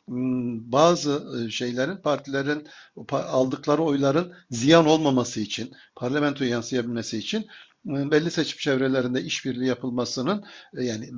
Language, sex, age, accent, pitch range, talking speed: Turkish, male, 60-79, native, 135-190 Hz, 90 wpm